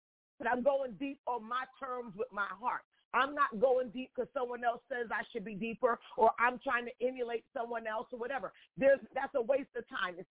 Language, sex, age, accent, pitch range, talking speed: English, female, 40-59, American, 215-275 Hz, 215 wpm